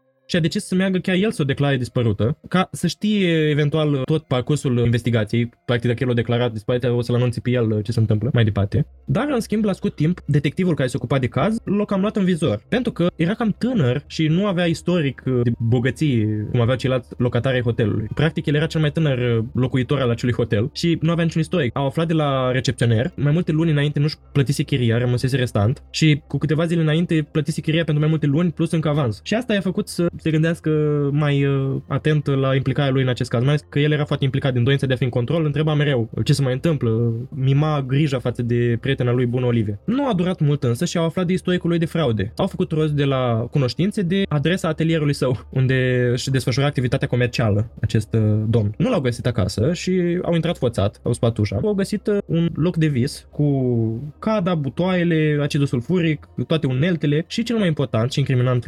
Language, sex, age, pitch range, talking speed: Romanian, male, 20-39, 125-165 Hz, 220 wpm